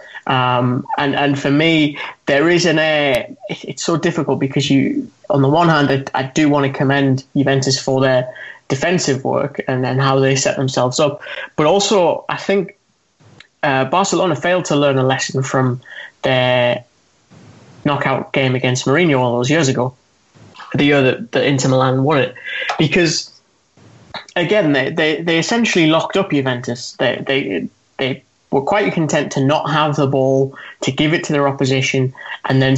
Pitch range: 135-155 Hz